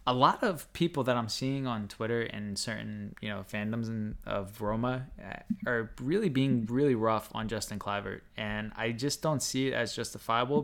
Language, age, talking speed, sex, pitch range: English, 20-39, 180 wpm, male, 105-125 Hz